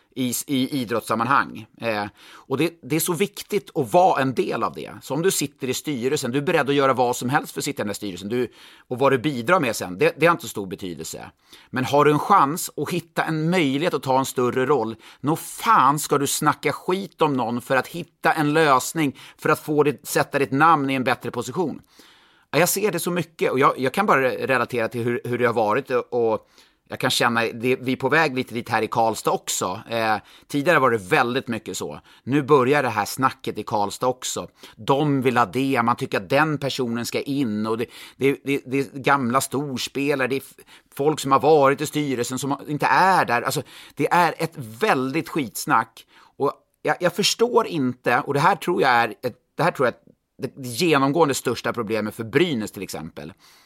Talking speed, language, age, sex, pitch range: 220 wpm, Swedish, 30-49, male, 120-150 Hz